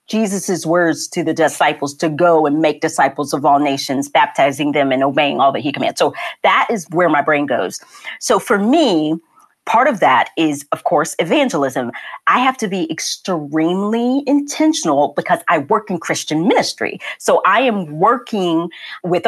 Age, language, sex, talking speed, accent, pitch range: 40-59, English, female, 170 wpm, American, 160-270 Hz